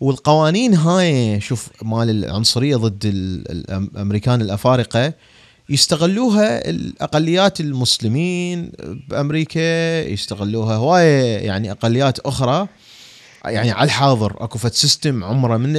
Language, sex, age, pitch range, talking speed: Arabic, male, 30-49, 110-150 Hz, 85 wpm